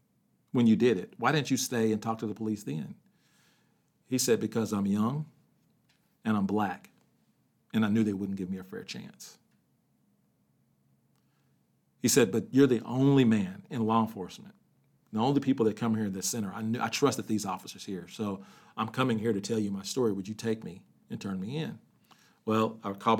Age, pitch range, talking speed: 40-59, 100-120 Hz, 200 wpm